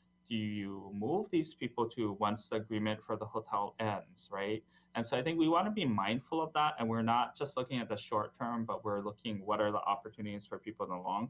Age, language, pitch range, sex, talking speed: 20-39, English, 110-140 Hz, male, 240 wpm